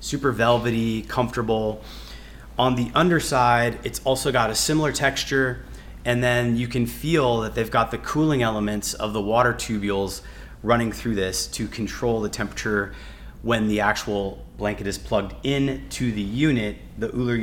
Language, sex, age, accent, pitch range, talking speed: English, male, 30-49, American, 100-125 Hz, 155 wpm